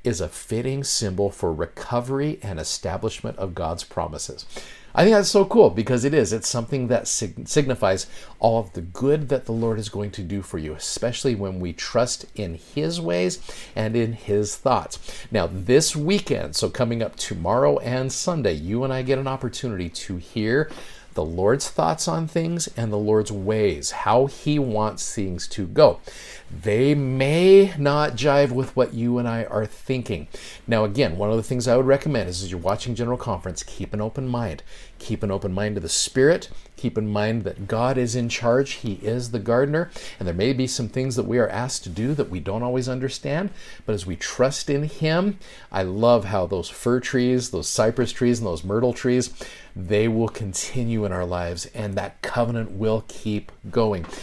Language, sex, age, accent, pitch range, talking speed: English, male, 50-69, American, 100-130 Hz, 195 wpm